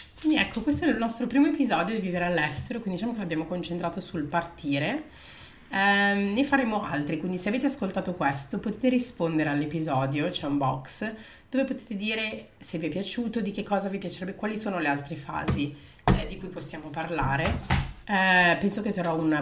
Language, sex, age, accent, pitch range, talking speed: Italian, female, 30-49, native, 155-200 Hz, 190 wpm